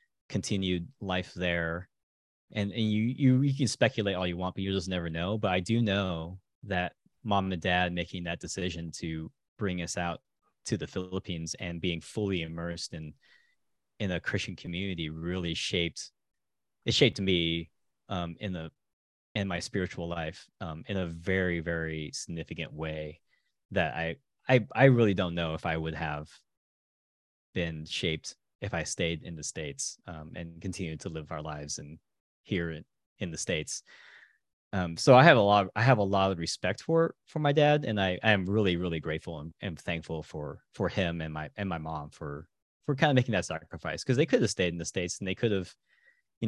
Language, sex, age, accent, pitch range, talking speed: English, male, 20-39, American, 80-100 Hz, 195 wpm